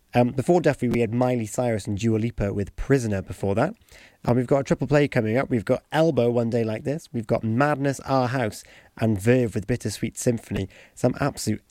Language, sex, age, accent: English, male, 30-49, British